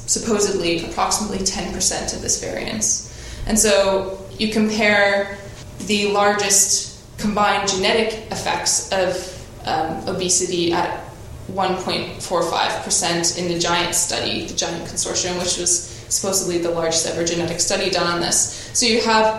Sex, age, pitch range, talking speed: female, 20-39, 175-200 Hz, 125 wpm